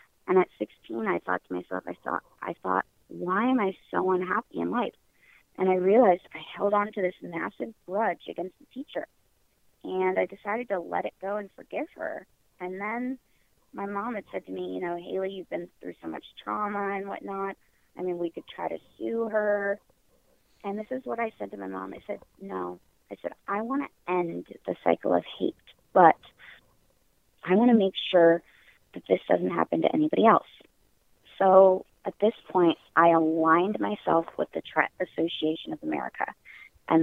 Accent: American